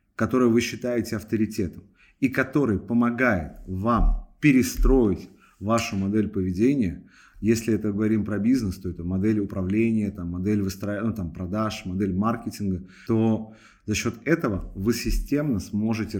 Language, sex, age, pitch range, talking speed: Russian, male, 30-49, 95-120 Hz, 120 wpm